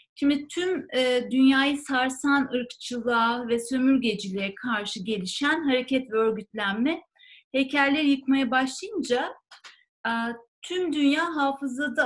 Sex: female